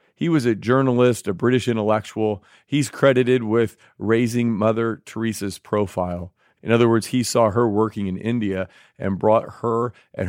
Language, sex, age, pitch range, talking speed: English, male, 40-59, 100-125 Hz, 155 wpm